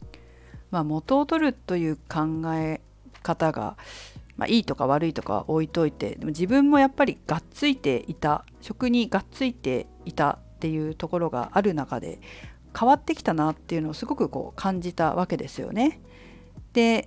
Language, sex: Japanese, female